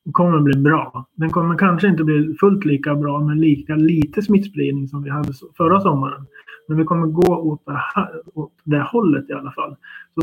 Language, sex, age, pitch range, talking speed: Swedish, male, 30-49, 140-165 Hz, 200 wpm